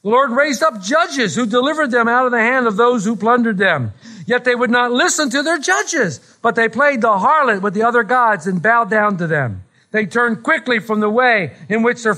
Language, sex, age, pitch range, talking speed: English, male, 50-69, 195-255 Hz, 235 wpm